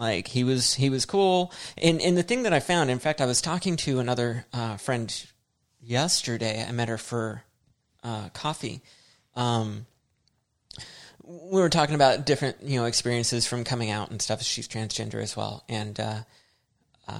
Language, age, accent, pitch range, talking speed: English, 30-49, American, 115-140 Hz, 170 wpm